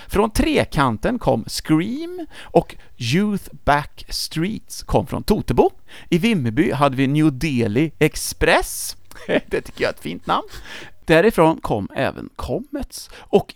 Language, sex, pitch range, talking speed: English, male, 120-185 Hz, 135 wpm